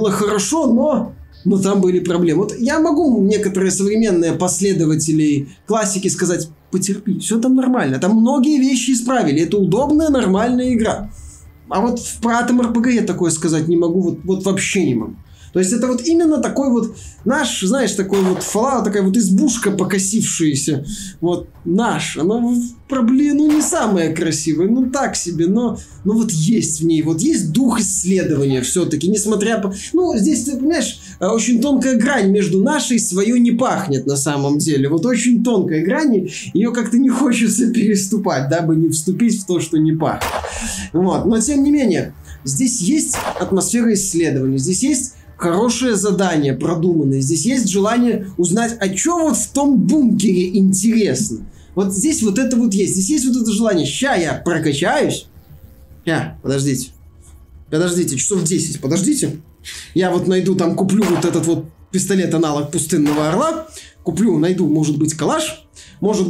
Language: Russian